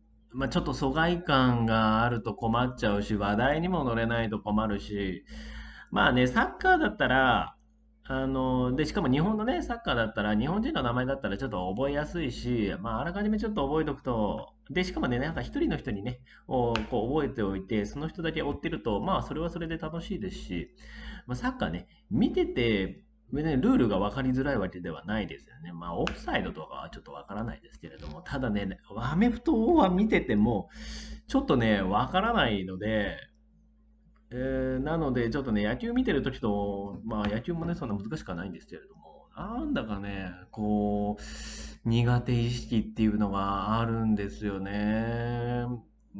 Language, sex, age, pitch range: Japanese, male, 30-49, 105-160 Hz